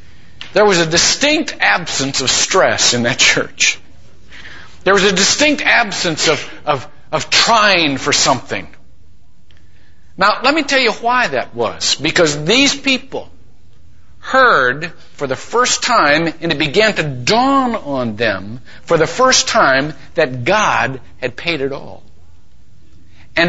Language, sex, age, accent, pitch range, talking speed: English, male, 60-79, American, 150-245 Hz, 140 wpm